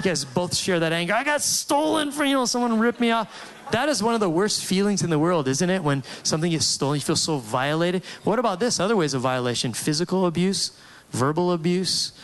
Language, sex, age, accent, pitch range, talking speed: English, male, 30-49, American, 140-185 Hz, 225 wpm